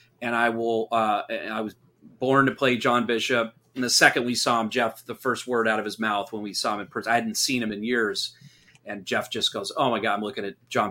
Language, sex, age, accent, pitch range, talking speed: English, male, 30-49, American, 110-125 Hz, 270 wpm